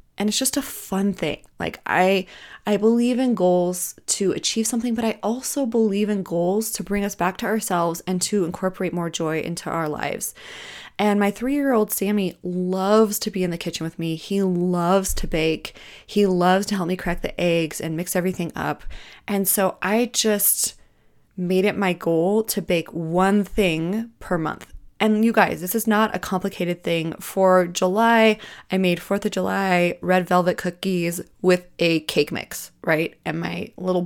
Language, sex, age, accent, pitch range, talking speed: English, female, 20-39, American, 175-210 Hz, 185 wpm